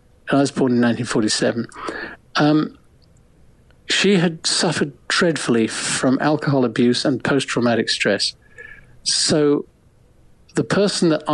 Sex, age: male, 50-69